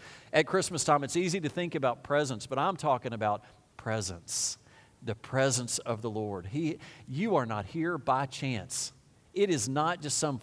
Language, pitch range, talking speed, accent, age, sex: English, 110-160 Hz, 180 wpm, American, 40-59, male